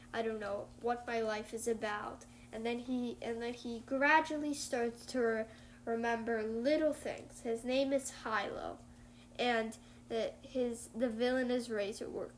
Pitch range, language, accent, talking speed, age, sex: 220-255 Hz, English, American, 160 wpm, 10-29, female